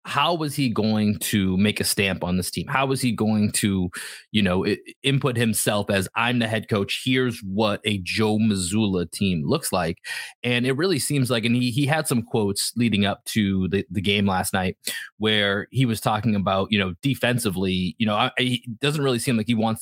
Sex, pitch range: male, 100-120 Hz